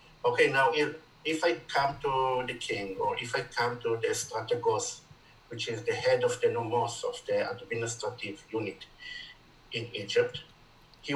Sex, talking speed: male, 160 wpm